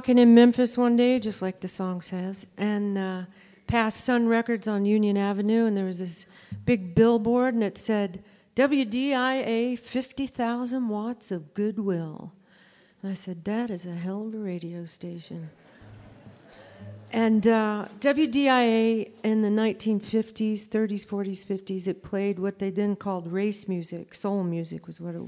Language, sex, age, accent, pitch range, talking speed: English, female, 40-59, American, 185-215 Hz, 150 wpm